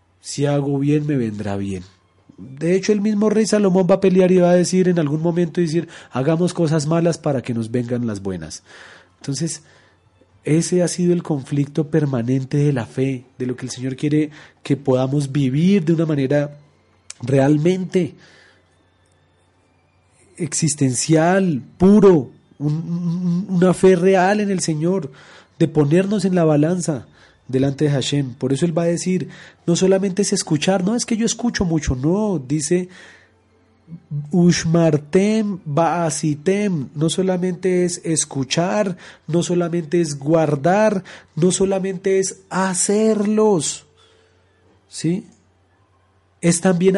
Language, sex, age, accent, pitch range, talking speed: Spanish, male, 30-49, Colombian, 135-185 Hz, 135 wpm